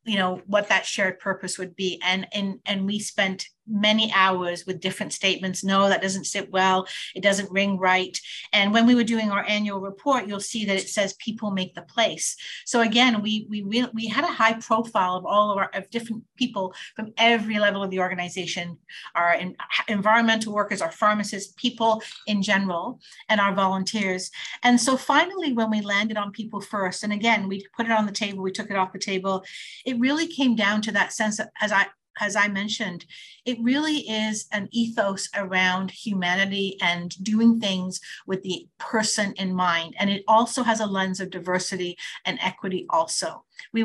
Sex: female